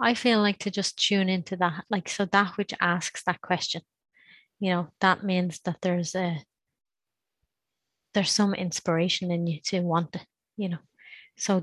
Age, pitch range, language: 30-49, 175-195 Hz, English